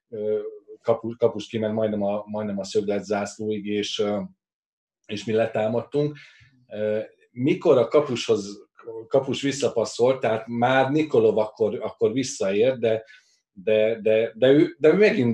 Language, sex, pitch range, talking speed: Hungarian, male, 100-145 Hz, 120 wpm